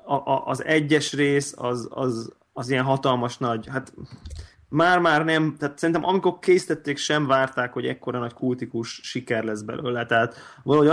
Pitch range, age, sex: 120-140 Hz, 20-39, male